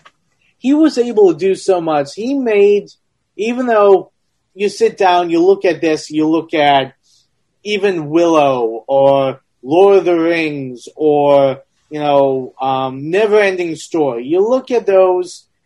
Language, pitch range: English, 145-200 Hz